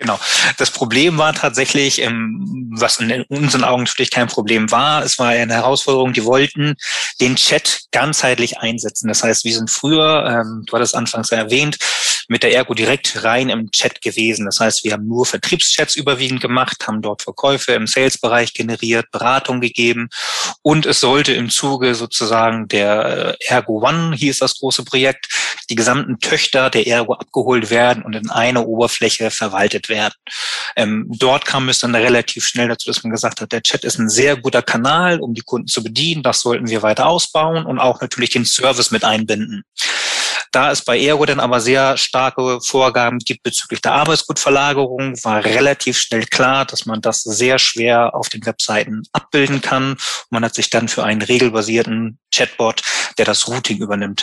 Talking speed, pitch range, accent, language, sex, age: 175 wpm, 115-135 Hz, German, German, male, 20-39